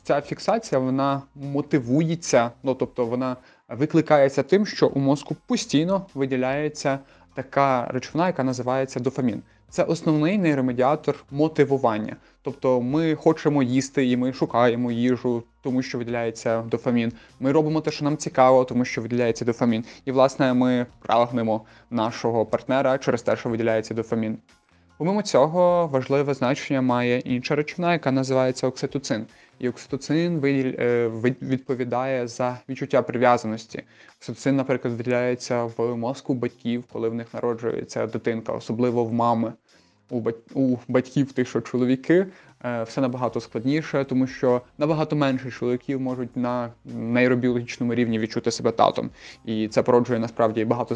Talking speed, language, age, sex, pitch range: 130 wpm, Ukrainian, 20-39, male, 120-140 Hz